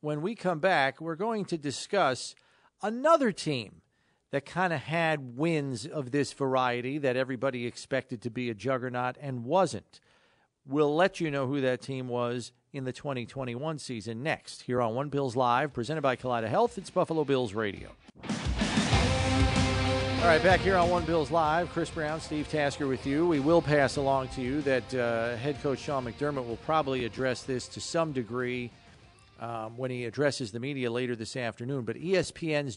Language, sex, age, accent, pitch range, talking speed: English, male, 40-59, American, 120-145 Hz, 180 wpm